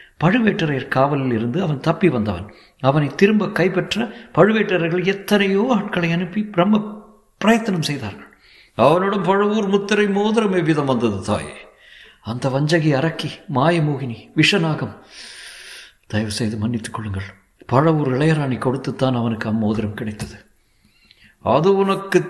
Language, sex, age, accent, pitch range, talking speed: Tamil, male, 60-79, native, 125-185 Hz, 105 wpm